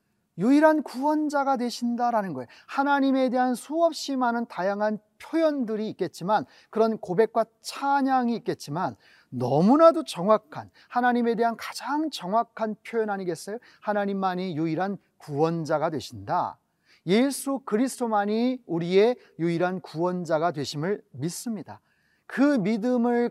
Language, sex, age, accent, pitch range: Korean, male, 40-59, native, 185-240 Hz